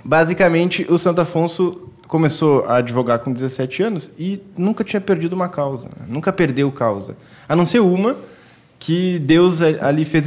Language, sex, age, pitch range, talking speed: Portuguese, male, 20-39, 140-180 Hz, 165 wpm